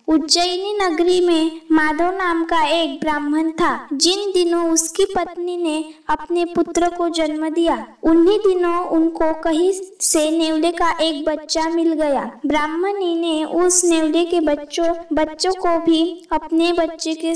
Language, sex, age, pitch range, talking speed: Marathi, female, 20-39, 315-345 Hz, 140 wpm